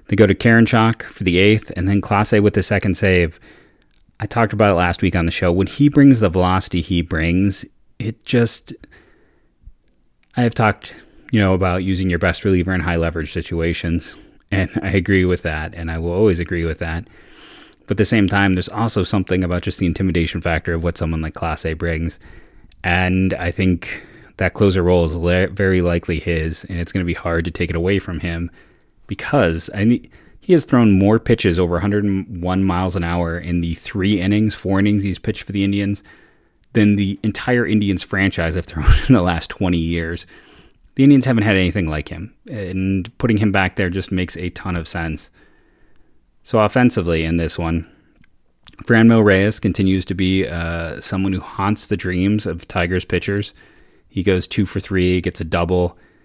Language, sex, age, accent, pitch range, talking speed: English, male, 30-49, American, 85-105 Hz, 195 wpm